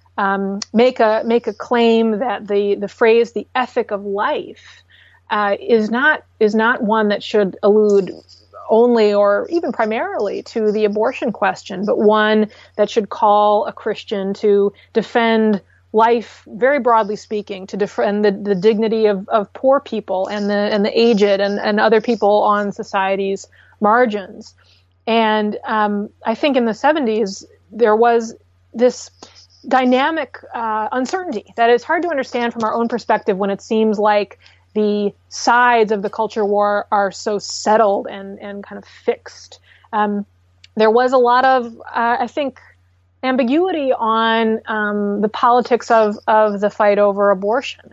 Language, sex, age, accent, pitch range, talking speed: English, female, 30-49, American, 205-230 Hz, 155 wpm